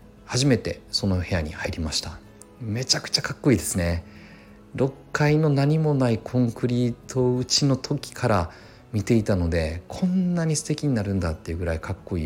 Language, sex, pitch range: Japanese, male, 85-120 Hz